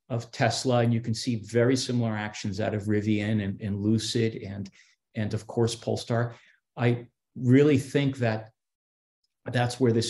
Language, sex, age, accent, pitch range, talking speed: English, male, 40-59, American, 110-130 Hz, 160 wpm